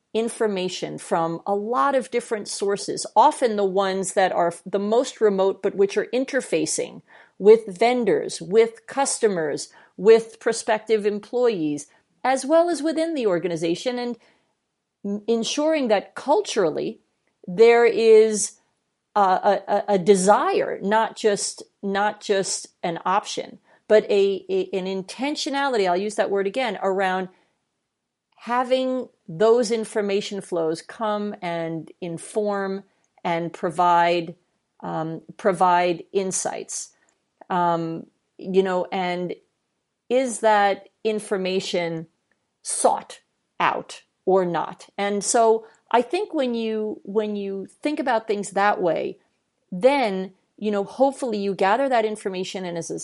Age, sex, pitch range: 40-59, female, 190-235 Hz